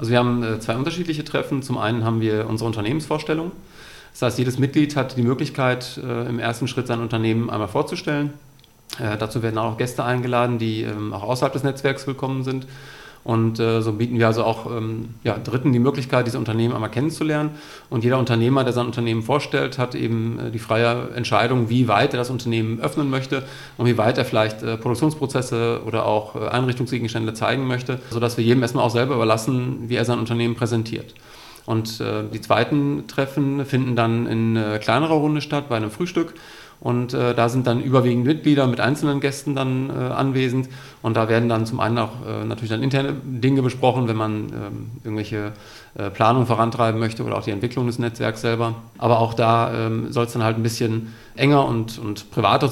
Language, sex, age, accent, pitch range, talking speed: German, male, 40-59, German, 115-130 Hz, 185 wpm